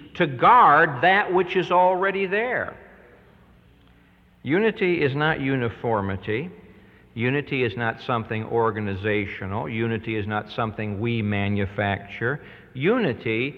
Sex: male